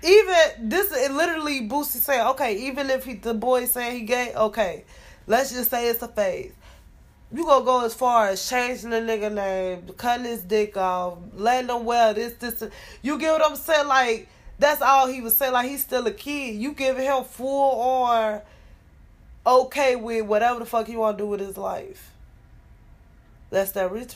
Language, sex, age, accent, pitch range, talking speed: English, female, 20-39, American, 190-240 Hz, 190 wpm